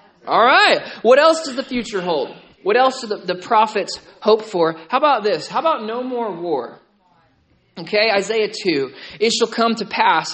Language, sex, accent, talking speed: English, male, American, 180 wpm